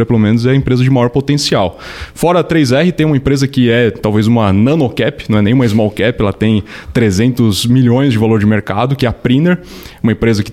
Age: 20-39